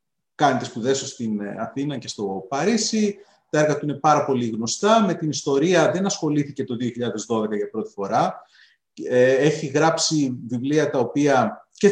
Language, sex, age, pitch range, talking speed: Greek, male, 30-49, 120-155 Hz, 160 wpm